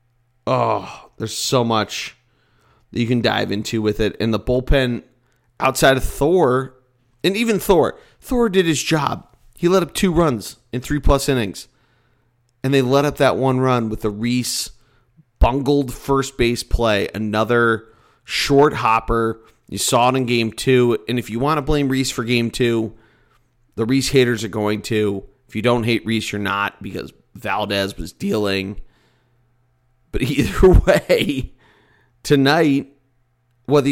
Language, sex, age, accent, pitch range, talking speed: English, male, 30-49, American, 110-130 Hz, 150 wpm